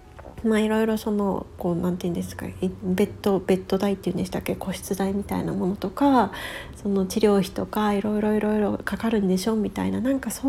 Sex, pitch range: female, 195-245 Hz